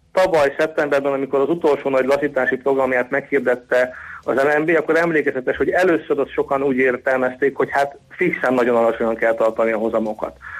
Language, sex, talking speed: Hungarian, male, 160 wpm